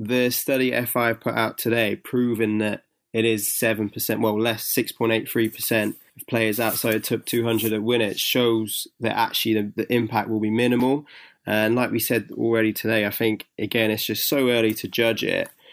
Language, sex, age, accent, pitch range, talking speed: English, male, 20-39, British, 110-125 Hz, 180 wpm